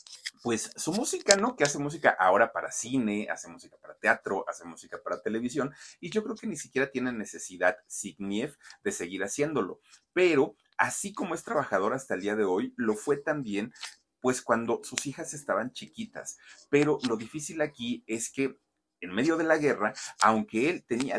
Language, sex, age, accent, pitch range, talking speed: Spanish, male, 40-59, Mexican, 105-145 Hz, 180 wpm